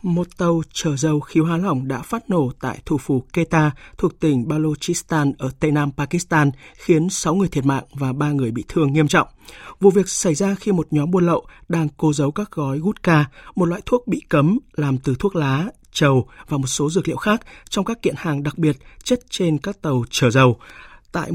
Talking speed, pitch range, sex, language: 215 wpm, 140-175 Hz, male, Vietnamese